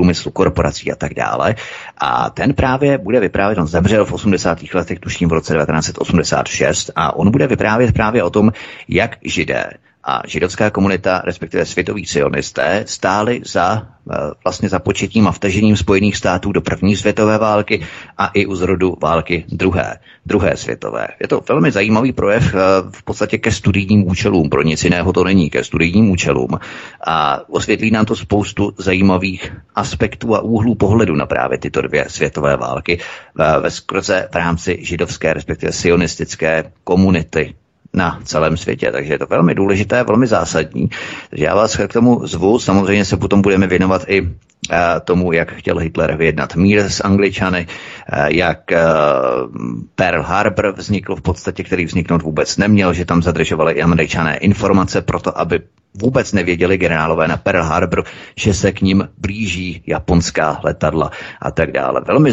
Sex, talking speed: male, 155 wpm